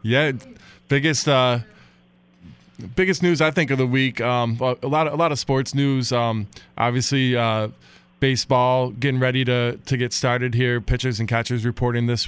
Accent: American